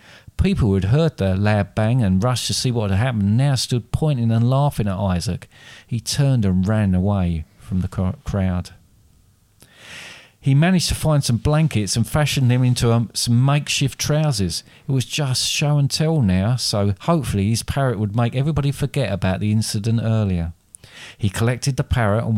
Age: 40-59